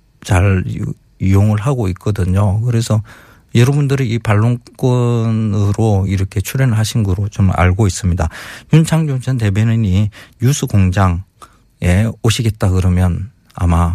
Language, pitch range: Korean, 95-130 Hz